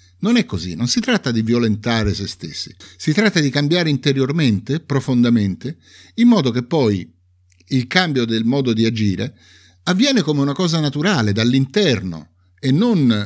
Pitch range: 95-145 Hz